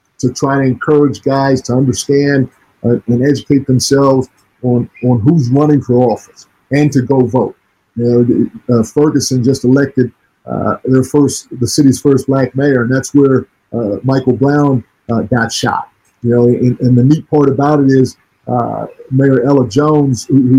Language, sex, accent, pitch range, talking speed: English, male, American, 125-140 Hz, 170 wpm